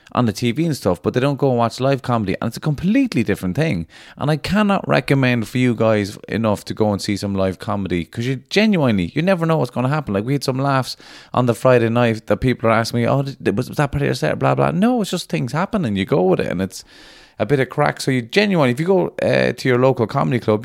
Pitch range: 95-135 Hz